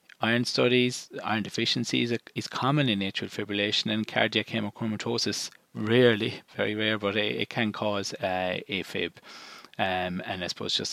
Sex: male